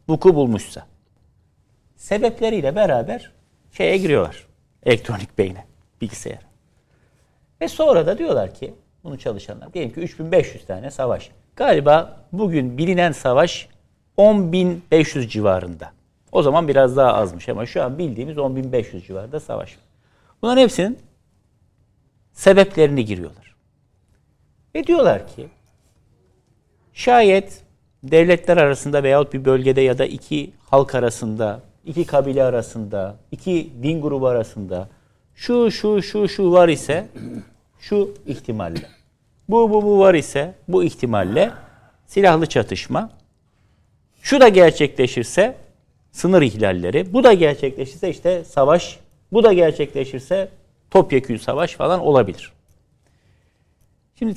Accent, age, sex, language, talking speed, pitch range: native, 60-79, male, Turkish, 110 wpm, 115-185 Hz